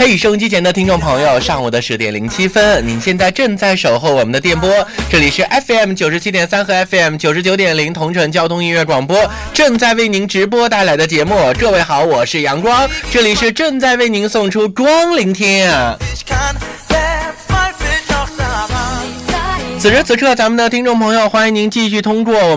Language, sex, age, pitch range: Chinese, male, 20-39, 165-235 Hz